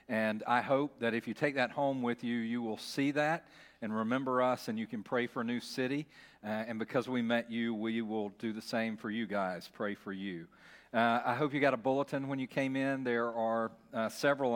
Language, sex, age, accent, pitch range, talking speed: English, male, 40-59, American, 115-135 Hz, 240 wpm